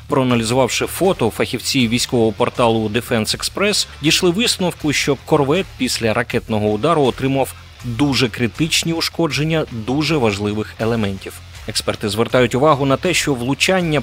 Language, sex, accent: Ukrainian, male, native